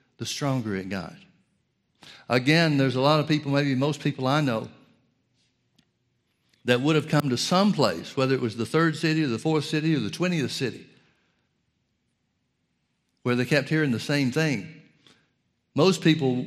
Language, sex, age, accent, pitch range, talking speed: English, male, 60-79, American, 120-145 Hz, 165 wpm